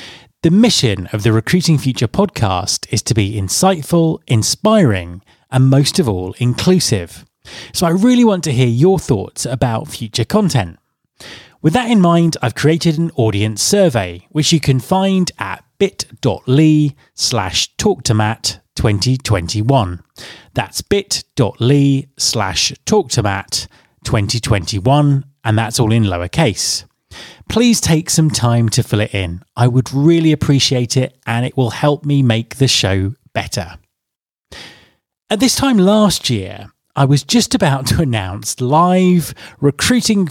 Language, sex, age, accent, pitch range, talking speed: English, male, 30-49, British, 110-160 Hz, 135 wpm